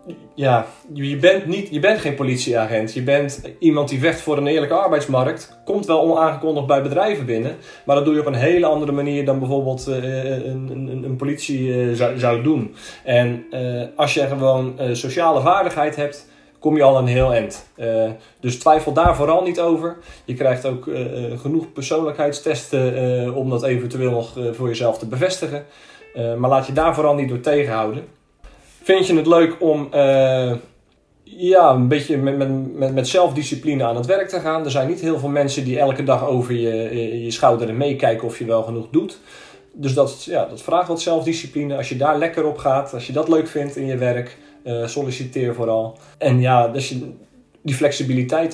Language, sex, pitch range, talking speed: Dutch, male, 125-155 Hz, 180 wpm